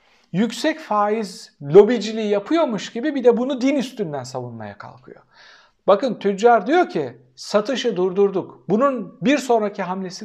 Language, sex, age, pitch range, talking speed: Turkish, male, 60-79, 165-250 Hz, 130 wpm